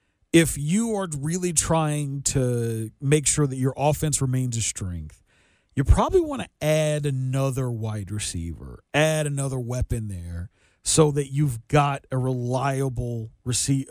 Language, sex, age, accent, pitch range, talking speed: English, male, 40-59, American, 115-150 Hz, 140 wpm